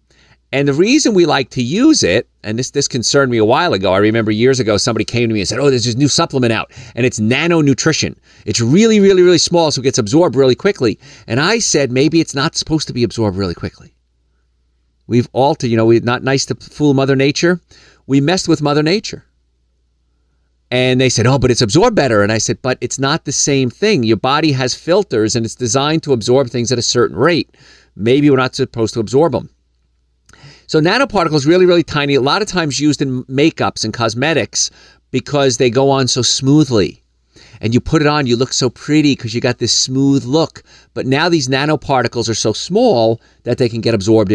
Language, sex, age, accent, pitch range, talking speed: English, male, 50-69, American, 110-145 Hz, 215 wpm